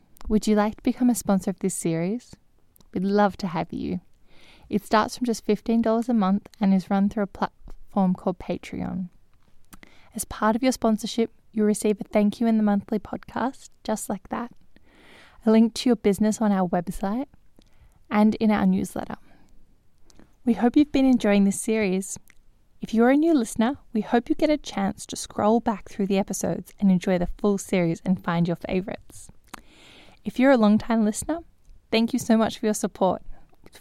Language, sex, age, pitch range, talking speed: English, female, 10-29, 195-230 Hz, 185 wpm